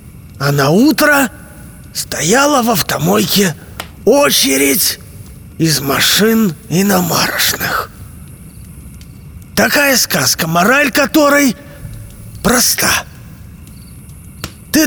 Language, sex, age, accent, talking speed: Russian, male, 30-49, native, 65 wpm